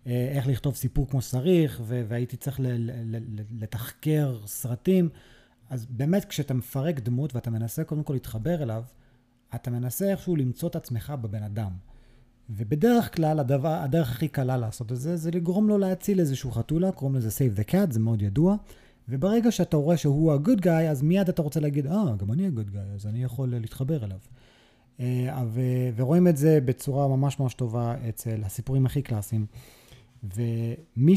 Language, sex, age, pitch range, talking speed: Hebrew, male, 30-49, 115-155 Hz, 160 wpm